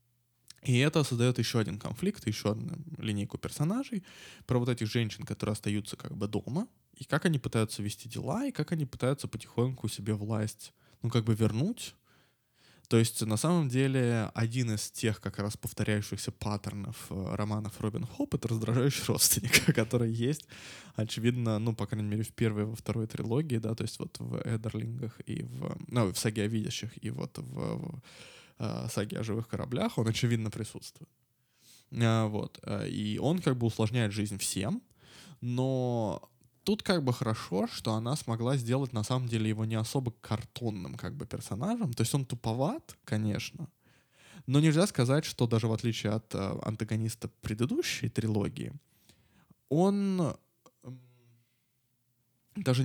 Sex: male